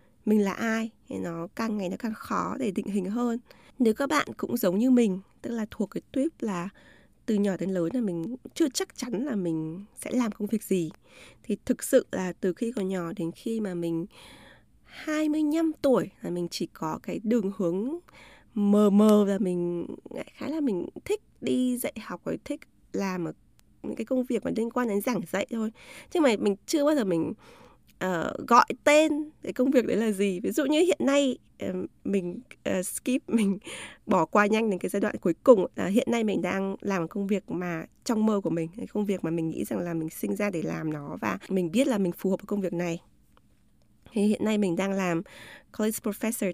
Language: Vietnamese